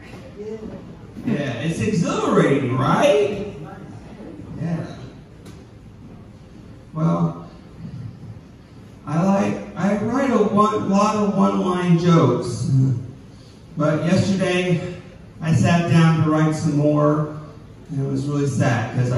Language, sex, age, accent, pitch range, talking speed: English, male, 40-59, American, 125-170 Hz, 90 wpm